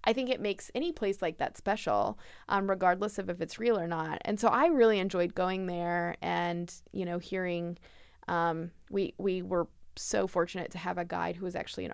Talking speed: 210 wpm